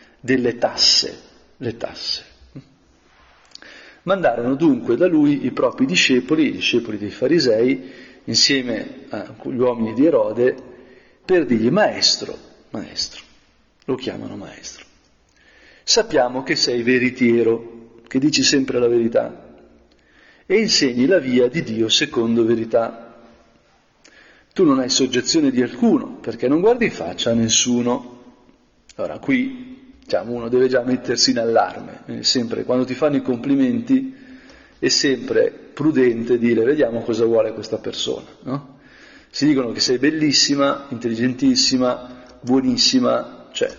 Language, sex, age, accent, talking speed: Italian, male, 40-59, native, 125 wpm